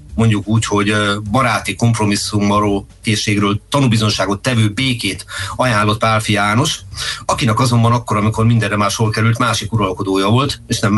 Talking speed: 130 wpm